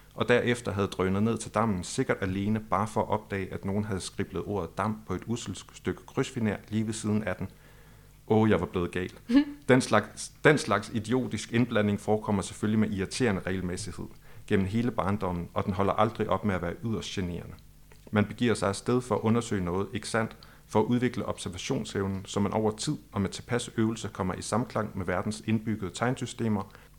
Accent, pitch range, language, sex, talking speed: native, 95-115 Hz, Danish, male, 200 wpm